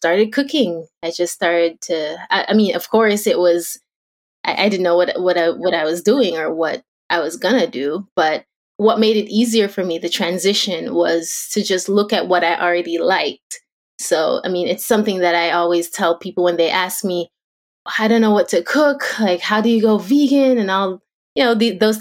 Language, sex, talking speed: English, female, 220 wpm